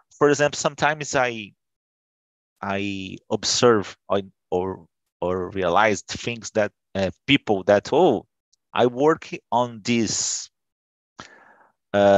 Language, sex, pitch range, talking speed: Portuguese, male, 95-125 Hz, 105 wpm